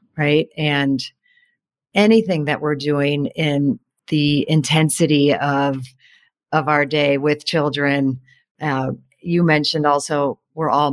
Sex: female